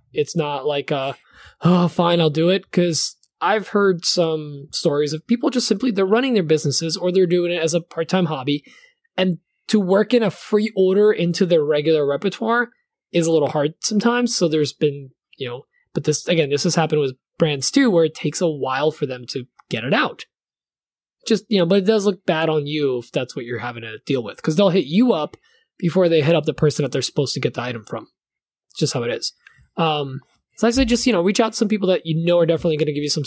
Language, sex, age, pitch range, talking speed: English, male, 20-39, 155-215 Hz, 245 wpm